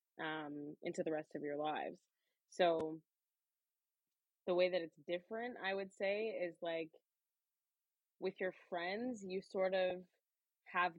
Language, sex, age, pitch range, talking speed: English, female, 20-39, 160-180 Hz, 135 wpm